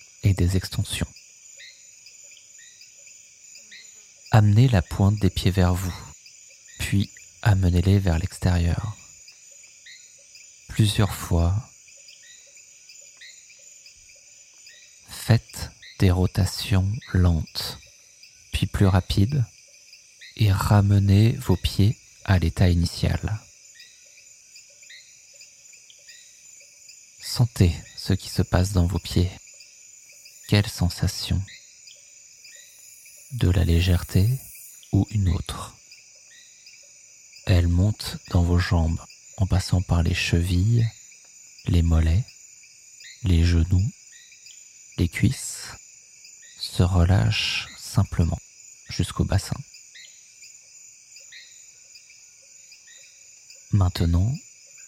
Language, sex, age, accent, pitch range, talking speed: French, male, 40-59, French, 90-110 Hz, 75 wpm